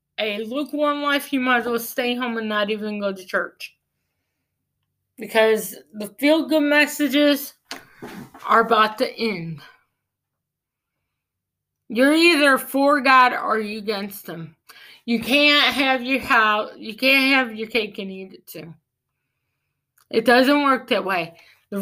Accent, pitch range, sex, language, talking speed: American, 220-300 Hz, female, English, 140 wpm